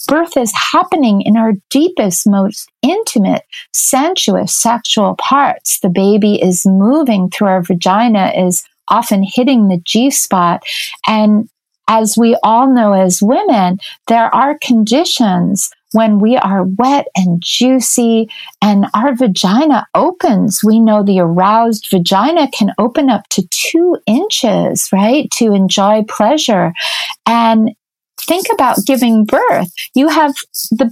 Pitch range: 200-270 Hz